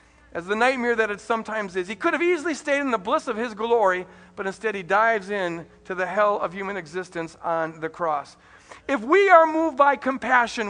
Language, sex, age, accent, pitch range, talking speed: English, male, 50-69, American, 170-230 Hz, 215 wpm